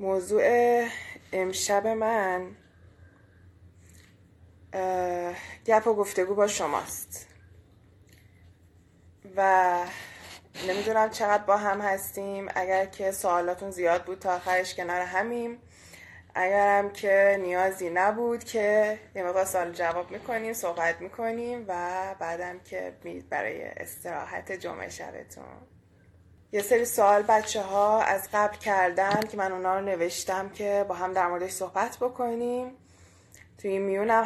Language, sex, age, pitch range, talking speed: Persian, female, 20-39, 175-200 Hz, 115 wpm